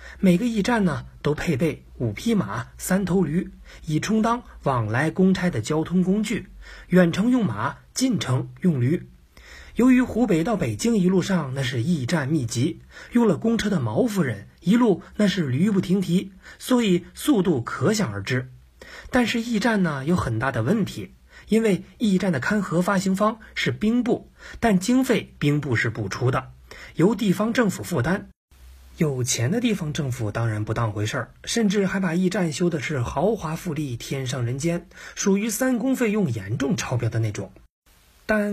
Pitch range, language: 135-215 Hz, Chinese